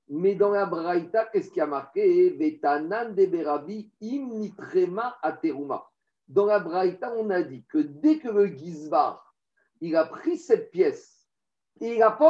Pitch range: 195-315 Hz